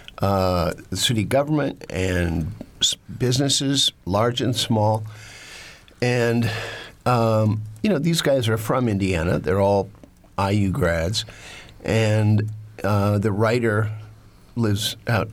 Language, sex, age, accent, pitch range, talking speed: English, male, 50-69, American, 95-120 Hz, 110 wpm